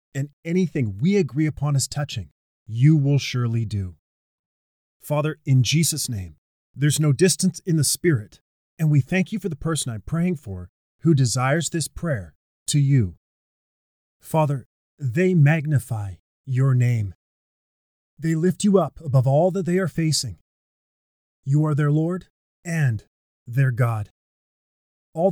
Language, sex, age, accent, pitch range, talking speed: English, male, 30-49, American, 110-160 Hz, 140 wpm